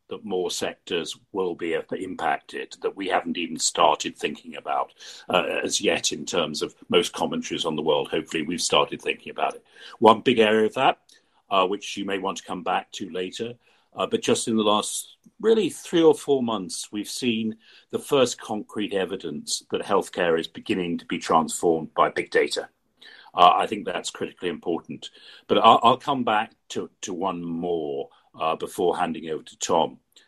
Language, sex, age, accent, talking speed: English, male, 50-69, British, 185 wpm